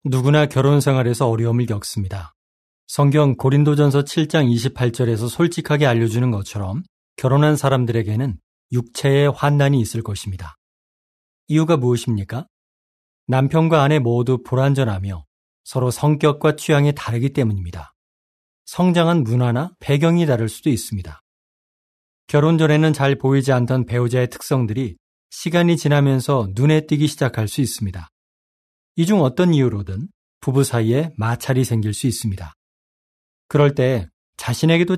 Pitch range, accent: 110-150 Hz, native